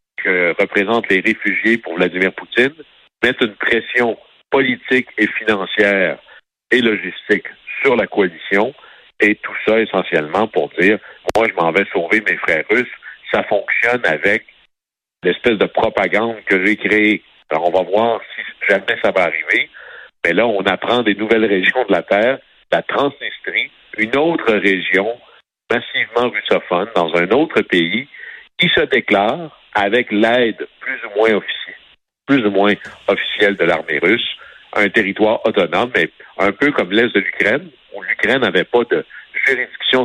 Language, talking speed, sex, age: French, 155 wpm, male, 60-79